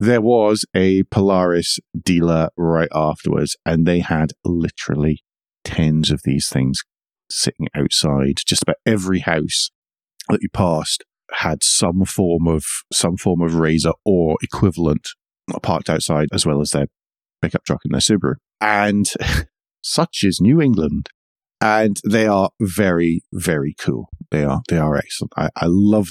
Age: 40-59